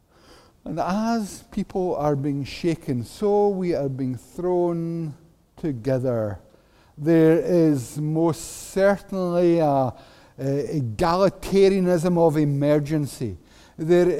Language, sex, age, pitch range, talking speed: English, male, 60-79, 145-195 Hz, 95 wpm